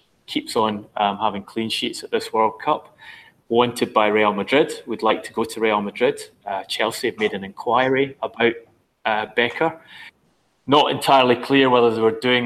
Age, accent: 20-39, British